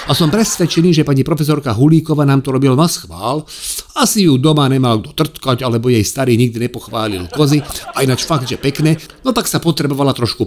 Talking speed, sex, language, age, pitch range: 195 wpm, male, Slovak, 50-69, 115-160 Hz